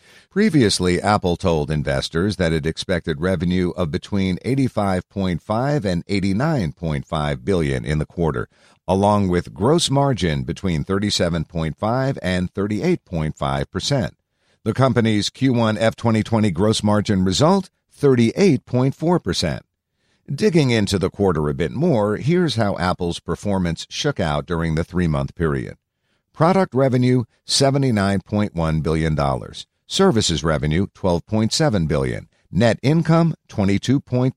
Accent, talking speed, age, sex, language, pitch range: American, 115 wpm, 50-69, male, English, 85-130 Hz